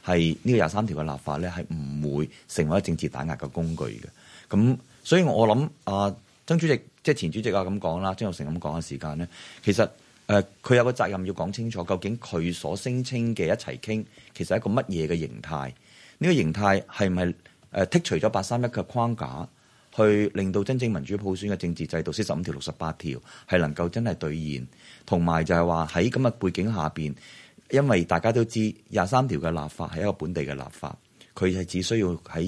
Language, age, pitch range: Chinese, 30-49, 80-110 Hz